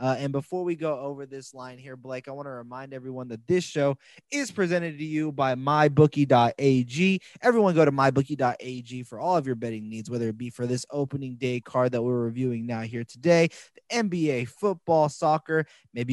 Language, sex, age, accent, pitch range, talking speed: English, male, 20-39, American, 125-150 Hz, 195 wpm